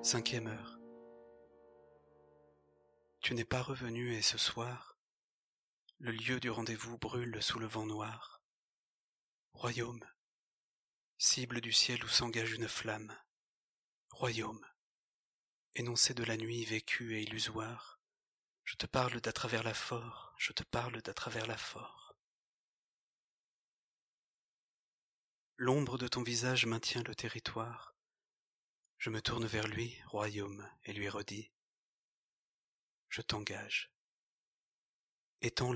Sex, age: male, 40-59